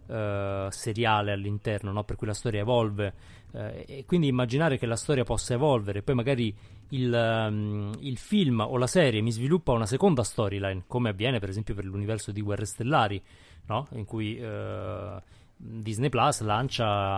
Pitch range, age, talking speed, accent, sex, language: 105-125 Hz, 30-49, 150 wpm, native, male, Italian